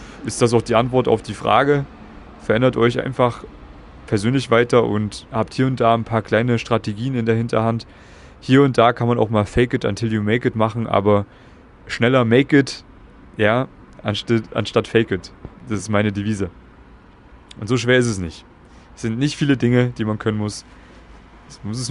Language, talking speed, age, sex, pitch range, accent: German, 190 wpm, 30-49, male, 105-125 Hz, German